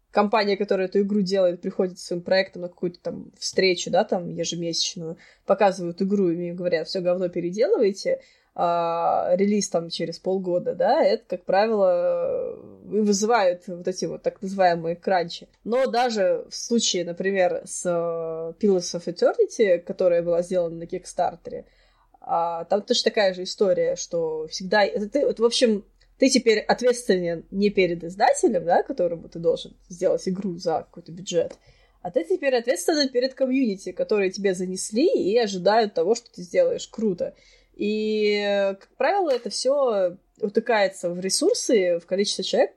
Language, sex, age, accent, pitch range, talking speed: Russian, female, 20-39, native, 180-260 Hz, 150 wpm